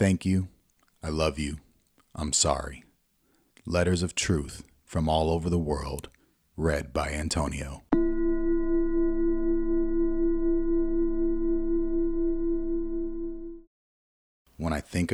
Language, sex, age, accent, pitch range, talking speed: English, male, 30-49, American, 75-105 Hz, 85 wpm